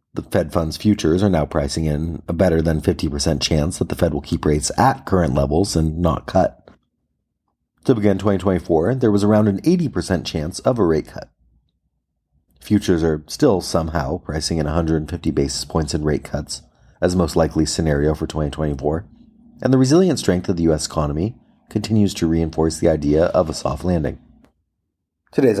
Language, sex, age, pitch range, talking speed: English, male, 30-49, 75-95 Hz, 175 wpm